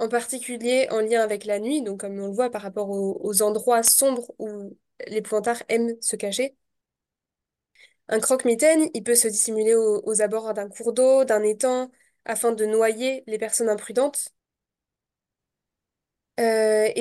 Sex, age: female, 20-39